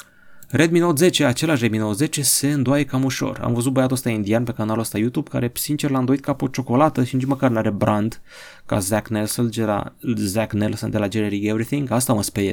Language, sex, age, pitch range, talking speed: Romanian, male, 30-49, 110-145 Hz, 205 wpm